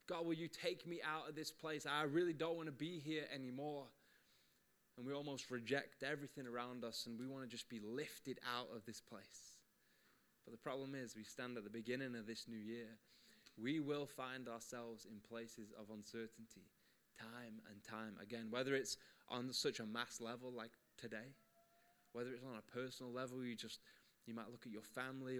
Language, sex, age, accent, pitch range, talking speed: English, male, 20-39, British, 115-150 Hz, 195 wpm